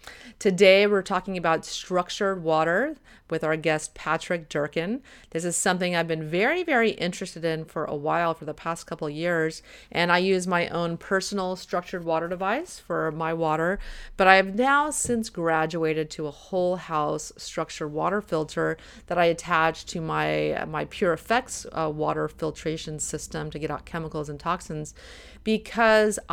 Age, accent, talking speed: 30-49, American, 165 wpm